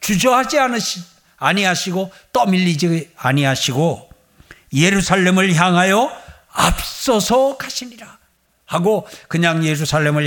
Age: 60-79